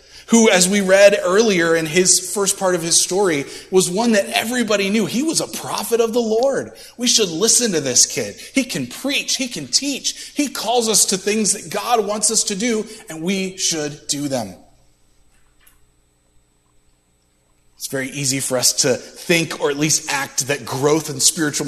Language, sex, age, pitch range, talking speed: English, male, 30-49, 115-185 Hz, 185 wpm